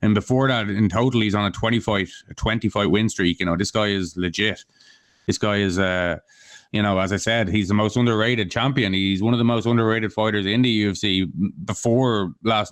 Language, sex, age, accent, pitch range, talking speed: English, male, 20-39, Irish, 95-110 Hz, 210 wpm